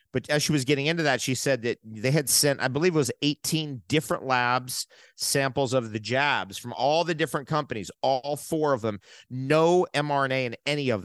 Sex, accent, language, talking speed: male, American, English, 205 wpm